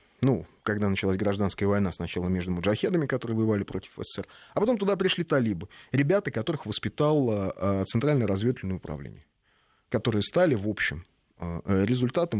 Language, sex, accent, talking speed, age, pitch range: Russian, male, native, 135 wpm, 30-49, 90-115 Hz